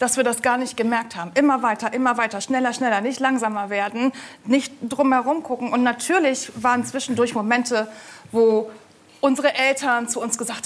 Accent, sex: German, female